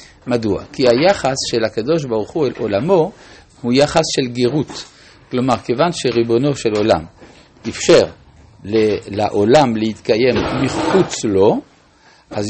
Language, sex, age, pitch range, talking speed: Hebrew, male, 60-79, 105-140 Hz, 115 wpm